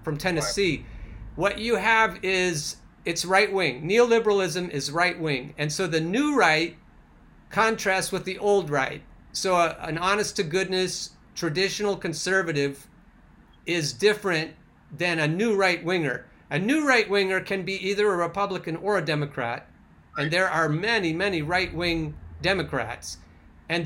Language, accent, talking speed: English, American, 145 wpm